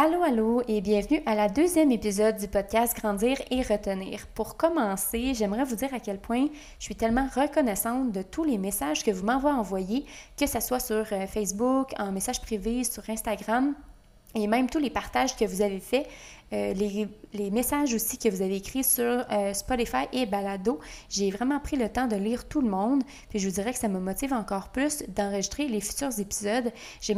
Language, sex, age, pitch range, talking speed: French, female, 20-39, 205-255 Hz, 195 wpm